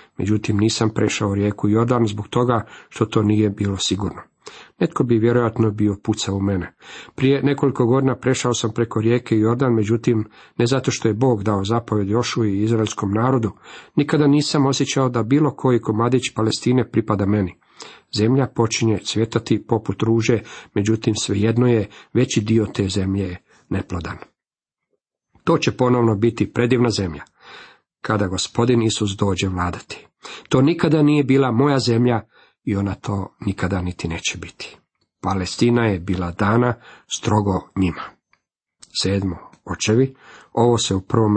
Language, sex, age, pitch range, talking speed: Croatian, male, 50-69, 105-125 Hz, 140 wpm